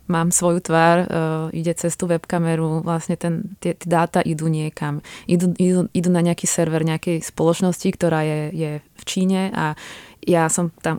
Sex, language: female, Czech